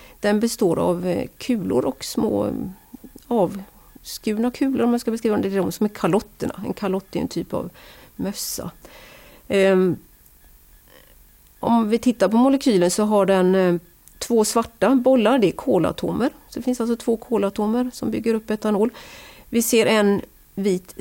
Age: 40-59